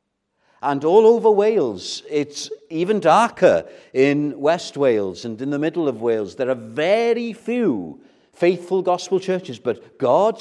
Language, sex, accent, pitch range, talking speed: English, male, British, 115-175 Hz, 145 wpm